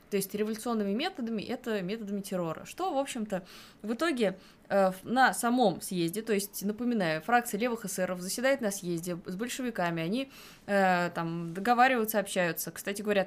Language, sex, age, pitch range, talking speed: Russian, female, 20-39, 180-230 Hz, 155 wpm